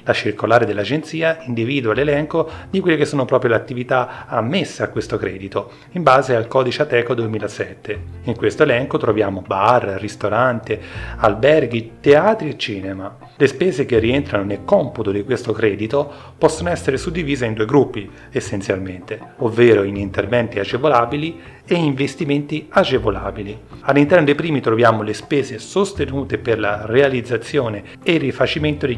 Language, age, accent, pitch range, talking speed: Italian, 40-59, native, 110-150 Hz, 145 wpm